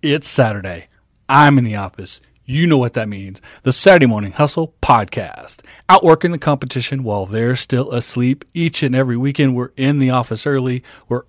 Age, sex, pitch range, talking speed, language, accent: 40-59, male, 120-150 Hz, 175 wpm, English, American